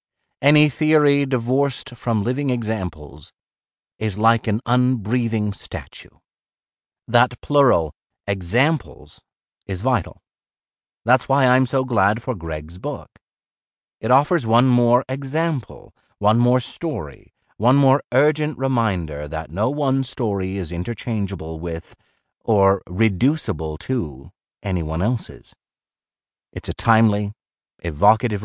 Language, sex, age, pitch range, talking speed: English, male, 30-49, 90-130 Hz, 110 wpm